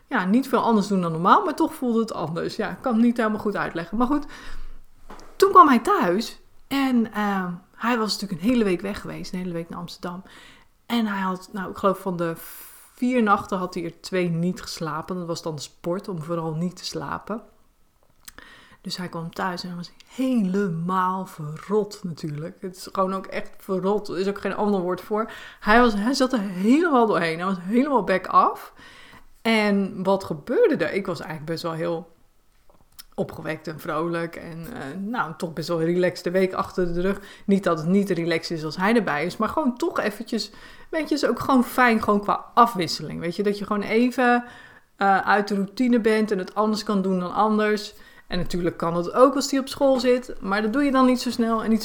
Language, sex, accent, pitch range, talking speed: Dutch, female, Dutch, 175-235 Hz, 220 wpm